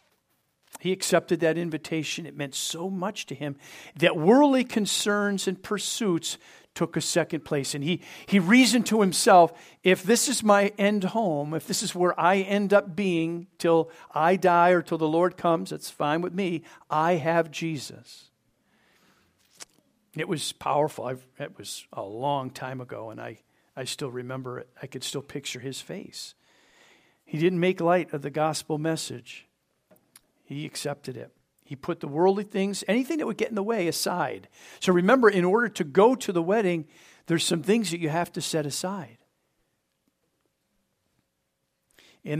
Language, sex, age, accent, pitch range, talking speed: English, male, 50-69, American, 150-195 Hz, 170 wpm